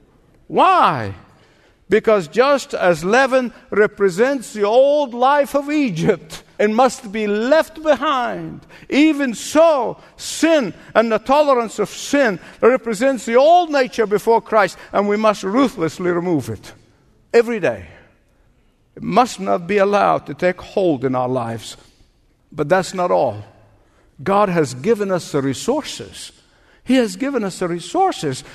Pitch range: 155-250 Hz